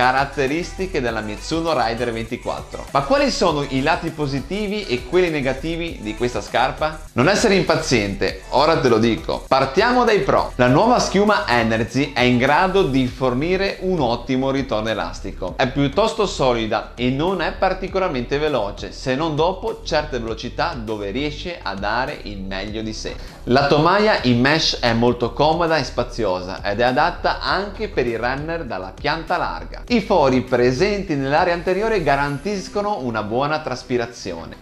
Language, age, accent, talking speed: Italian, 30-49, native, 155 wpm